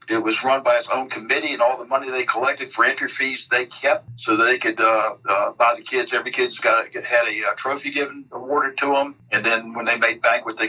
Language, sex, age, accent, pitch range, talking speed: English, male, 50-69, American, 120-150 Hz, 255 wpm